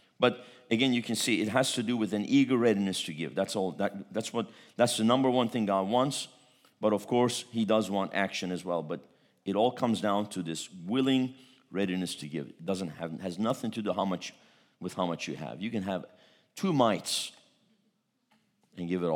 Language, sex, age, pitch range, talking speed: English, male, 50-69, 90-115 Hz, 215 wpm